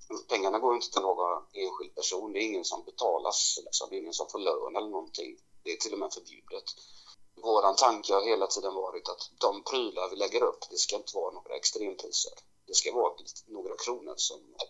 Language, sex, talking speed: Swedish, male, 210 wpm